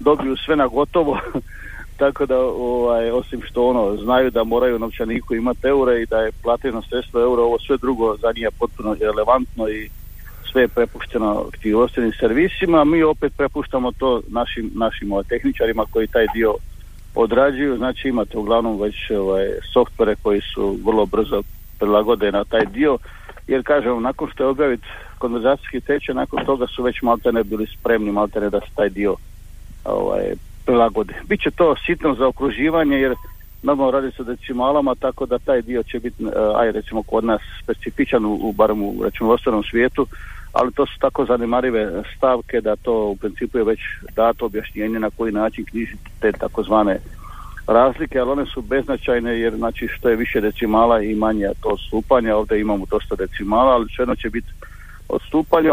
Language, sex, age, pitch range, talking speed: Croatian, male, 50-69, 105-130 Hz, 165 wpm